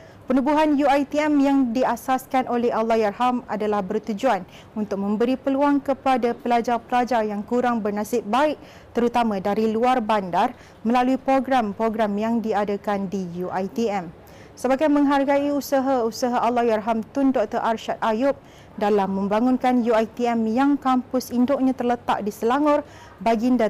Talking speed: 115 wpm